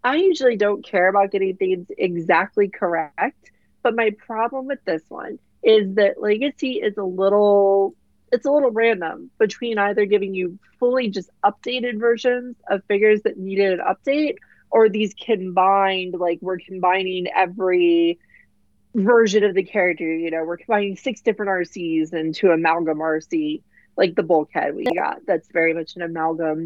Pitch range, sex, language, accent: 180-235 Hz, female, English, American